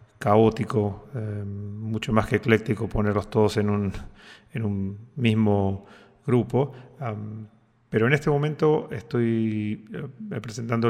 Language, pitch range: Spanish, 110-120 Hz